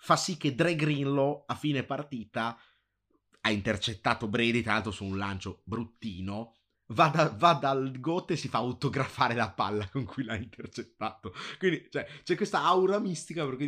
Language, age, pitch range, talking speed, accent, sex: Italian, 30-49, 100-135 Hz, 170 wpm, native, male